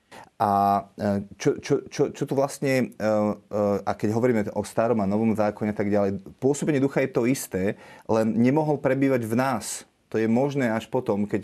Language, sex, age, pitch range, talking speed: Slovak, male, 30-49, 115-135 Hz, 175 wpm